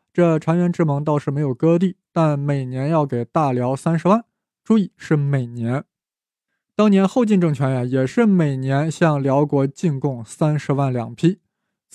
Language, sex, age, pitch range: Chinese, male, 20-39, 140-180 Hz